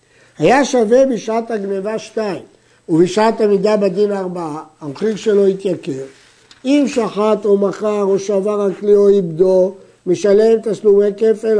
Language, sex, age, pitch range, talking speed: Hebrew, male, 60-79, 170-225 Hz, 125 wpm